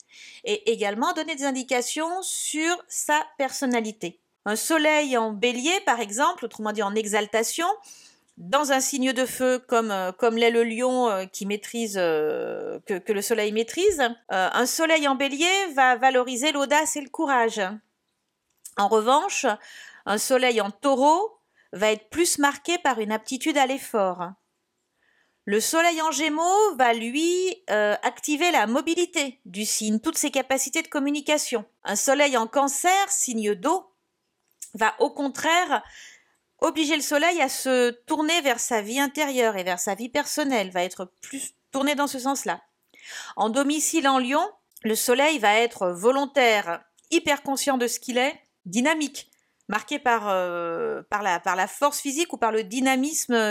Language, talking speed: French, 155 wpm